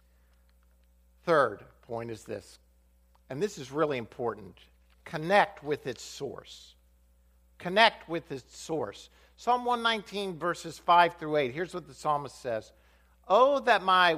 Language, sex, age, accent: English, male, 50-69, American